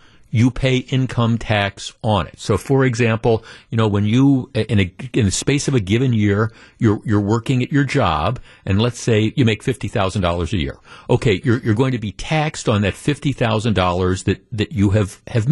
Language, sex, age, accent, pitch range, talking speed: English, male, 50-69, American, 105-130 Hz, 195 wpm